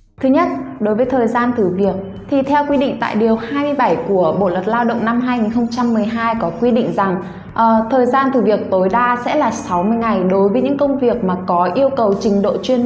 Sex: female